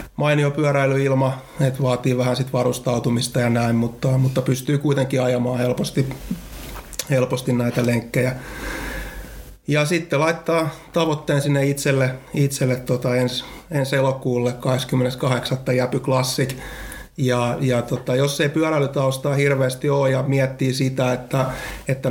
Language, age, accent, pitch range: Finnish, 30-49, native, 125-140 Hz